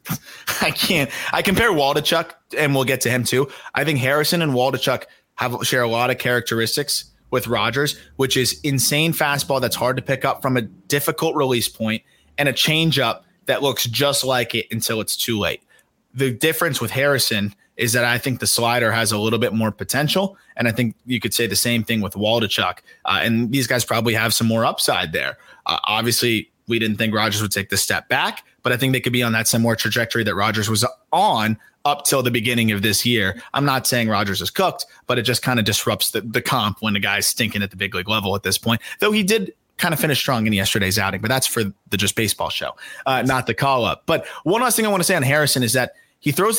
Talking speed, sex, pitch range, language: 235 wpm, male, 110-135 Hz, English